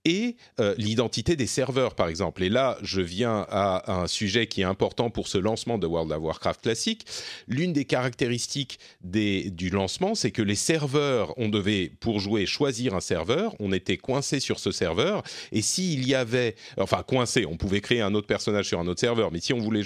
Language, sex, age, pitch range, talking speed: French, male, 40-59, 100-140 Hz, 210 wpm